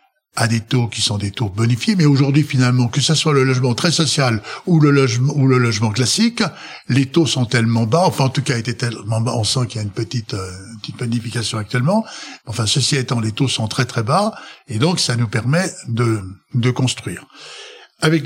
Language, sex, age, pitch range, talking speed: French, male, 60-79, 110-145 Hz, 215 wpm